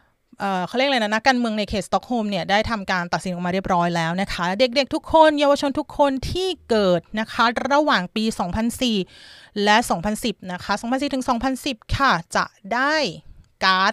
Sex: female